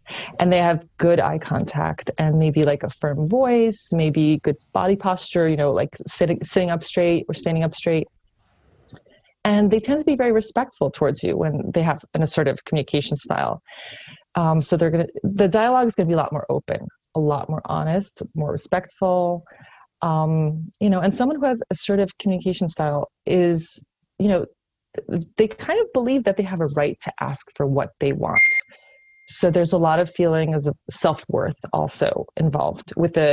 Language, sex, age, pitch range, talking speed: English, female, 30-49, 155-190 Hz, 185 wpm